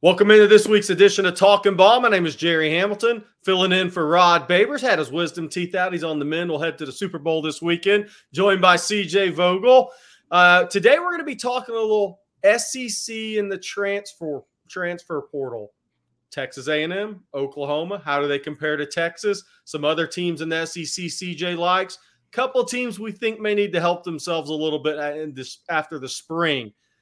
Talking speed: 195 wpm